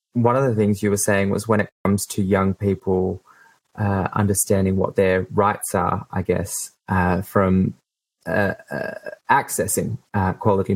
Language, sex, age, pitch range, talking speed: English, male, 20-39, 95-105 Hz, 160 wpm